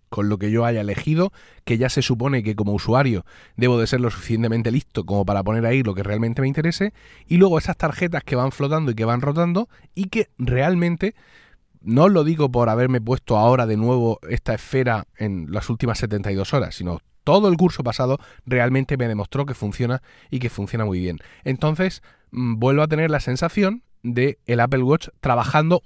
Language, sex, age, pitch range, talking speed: Spanish, male, 30-49, 115-170 Hz, 195 wpm